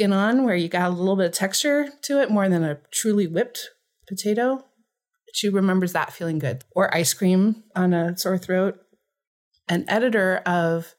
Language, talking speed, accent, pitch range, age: English, 175 wpm, American, 170-250 Hz, 30-49